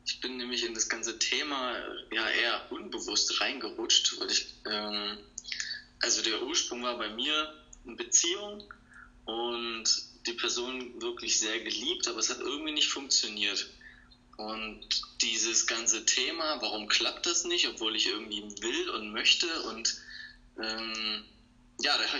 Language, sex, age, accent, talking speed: German, male, 20-39, German, 135 wpm